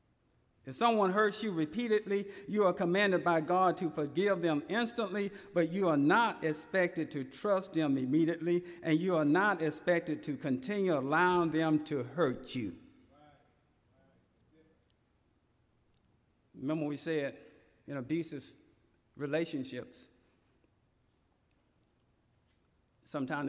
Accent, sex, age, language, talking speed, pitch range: American, male, 50-69, English, 105 wpm, 130-195 Hz